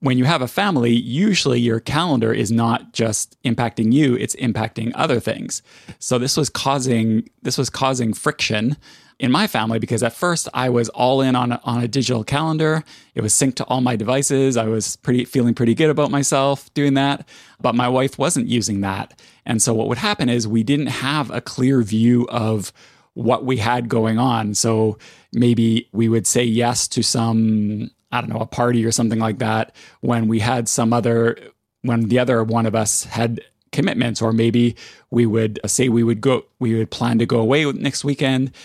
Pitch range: 115-130 Hz